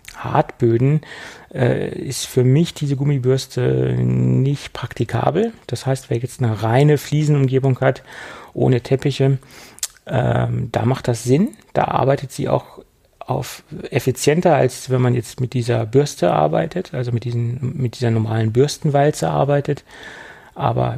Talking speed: 135 wpm